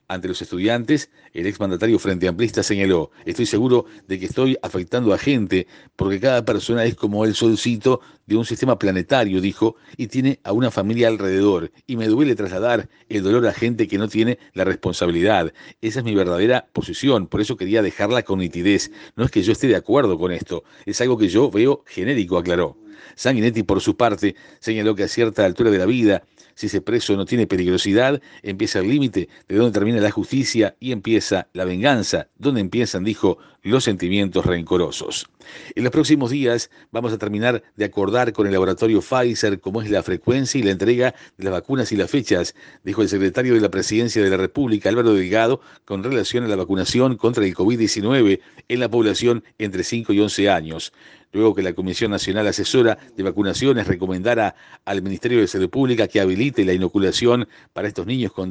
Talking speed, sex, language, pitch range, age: 190 wpm, male, Spanish, 95-120 Hz, 50-69